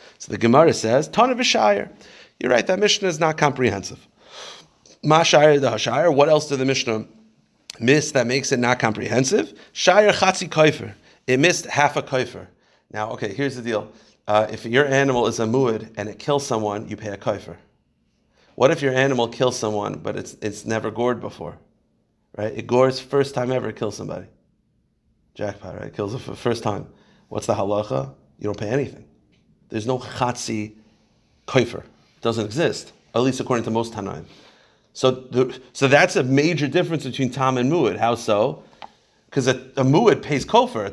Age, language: 30-49, English